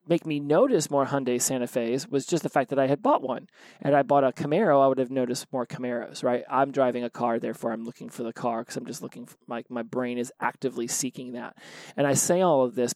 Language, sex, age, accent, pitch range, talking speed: English, male, 30-49, American, 125-150 Hz, 260 wpm